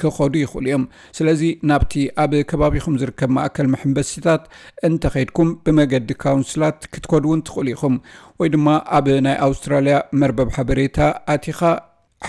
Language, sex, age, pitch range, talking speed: Amharic, male, 50-69, 135-150 Hz, 105 wpm